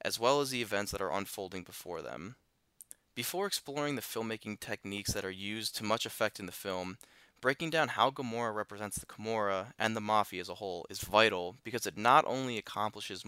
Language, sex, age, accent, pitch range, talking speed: English, male, 20-39, American, 100-120 Hz, 200 wpm